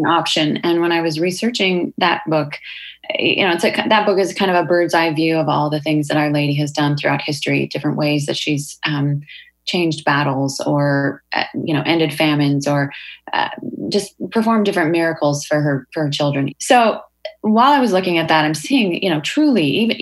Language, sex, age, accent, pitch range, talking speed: English, female, 20-39, American, 145-180 Hz, 205 wpm